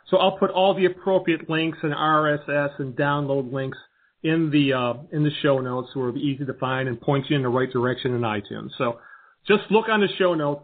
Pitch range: 135-175 Hz